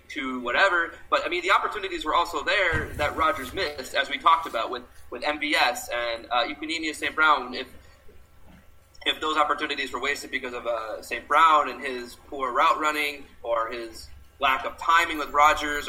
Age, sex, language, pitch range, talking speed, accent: 20-39, male, English, 125-180 Hz, 180 wpm, American